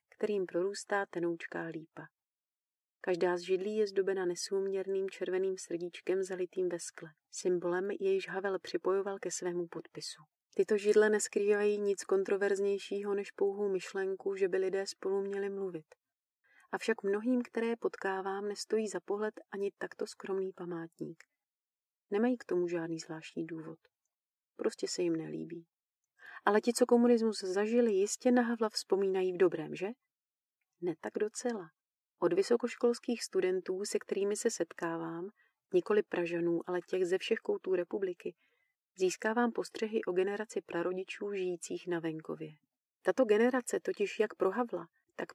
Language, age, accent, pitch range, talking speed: Czech, 30-49, native, 180-235 Hz, 130 wpm